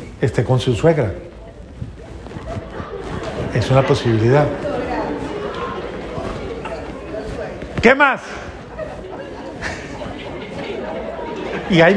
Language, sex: Spanish, male